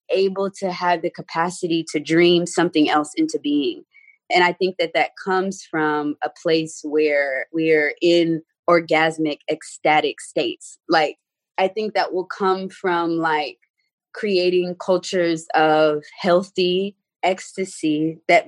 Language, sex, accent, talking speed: English, female, American, 130 wpm